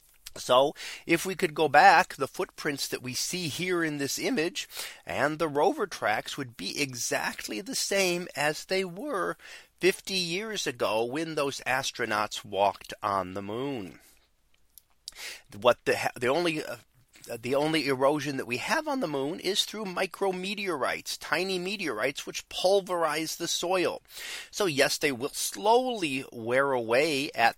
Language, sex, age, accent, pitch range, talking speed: English, male, 30-49, American, 130-185 Hz, 150 wpm